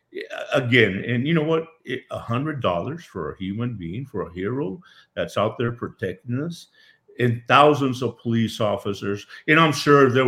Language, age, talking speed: English, 50-69, 175 wpm